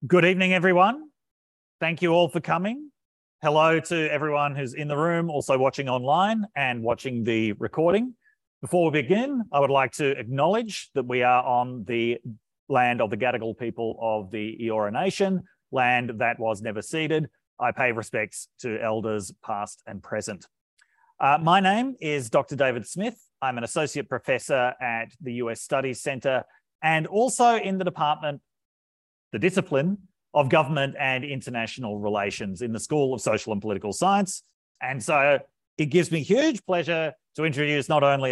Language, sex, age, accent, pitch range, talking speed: English, male, 30-49, Australian, 120-170 Hz, 165 wpm